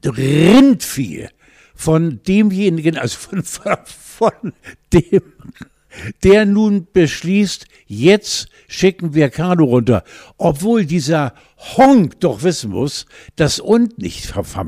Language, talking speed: German, 105 wpm